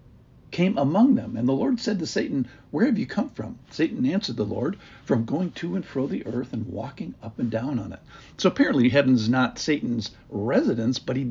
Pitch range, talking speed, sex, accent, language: 110-145 Hz, 210 wpm, male, American, English